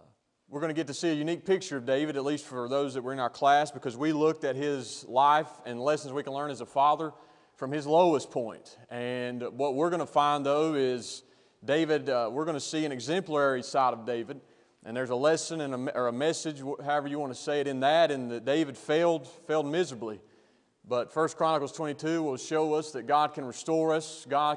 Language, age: English, 30-49